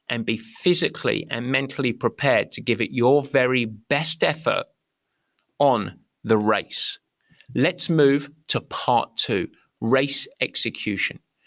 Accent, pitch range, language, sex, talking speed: British, 120-155 Hz, English, male, 120 wpm